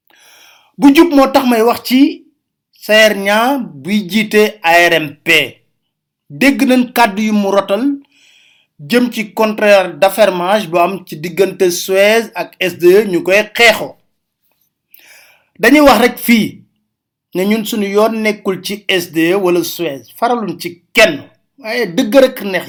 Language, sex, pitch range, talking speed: French, male, 195-255 Hz, 105 wpm